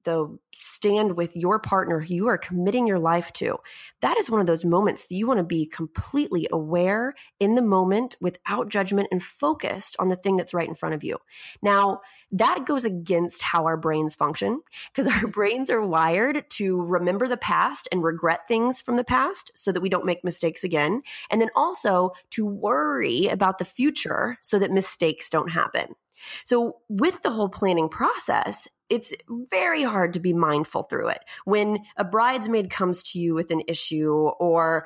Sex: female